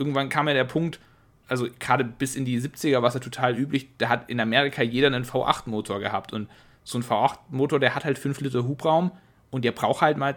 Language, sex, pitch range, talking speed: German, male, 120-140 Hz, 220 wpm